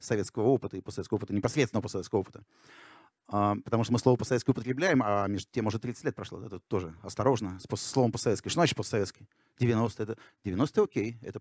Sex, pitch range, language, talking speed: male, 110-135 Hz, Russian, 195 wpm